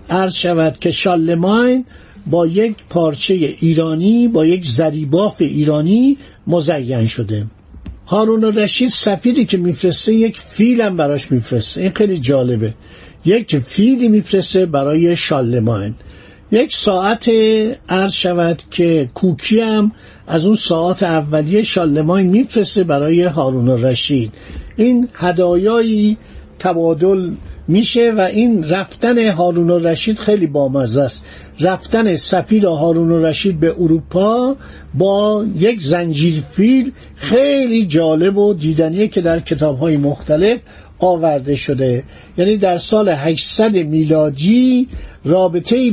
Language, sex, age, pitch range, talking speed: Persian, male, 60-79, 155-210 Hz, 120 wpm